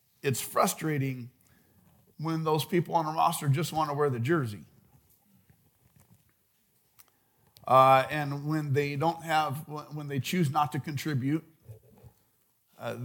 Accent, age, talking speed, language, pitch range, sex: American, 50-69, 125 wpm, English, 130-160 Hz, male